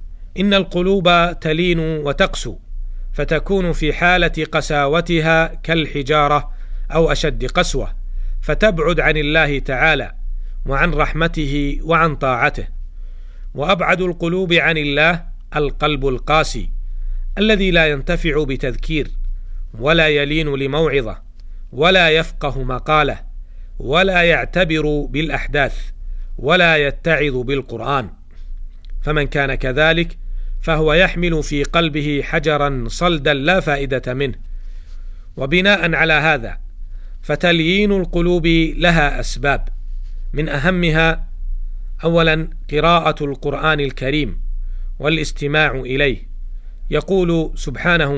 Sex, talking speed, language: male, 90 wpm, Arabic